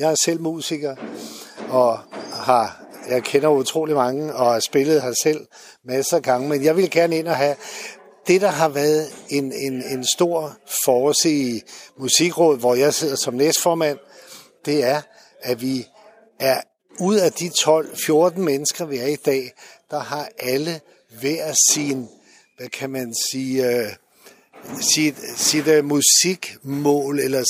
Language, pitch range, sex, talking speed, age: Danish, 130-160 Hz, male, 145 wpm, 60-79